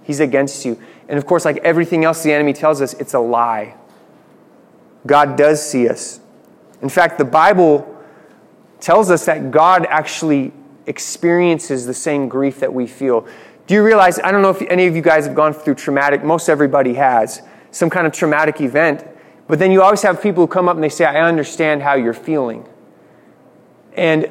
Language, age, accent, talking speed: English, 30-49, American, 190 wpm